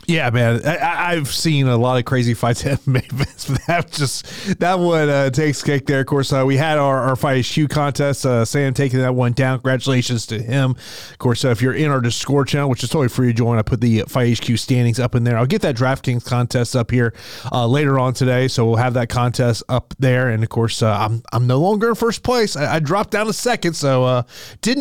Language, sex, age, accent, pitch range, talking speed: English, male, 30-49, American, 125-155 Hz, 245 wpm